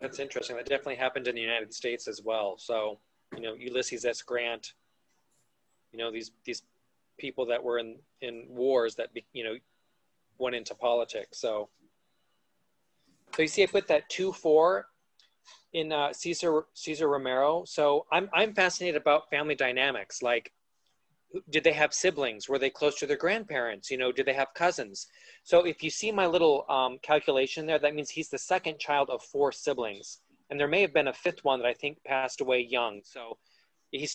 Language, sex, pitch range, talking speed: English, male, 120-160 Hz, 185 wpm